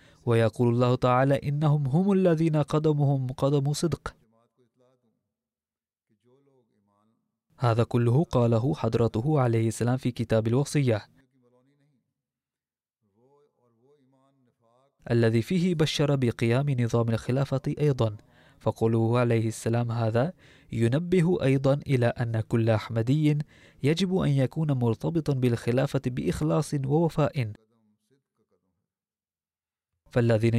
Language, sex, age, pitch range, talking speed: Arabic, male, 20-39, 115-140 Hz, 85 wpm